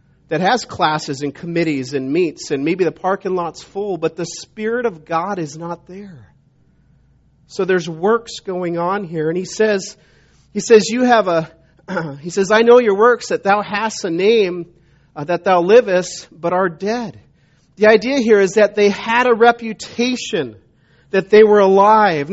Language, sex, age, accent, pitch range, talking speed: English, male, 40-59, American, 165-230 Hz, 175 wpm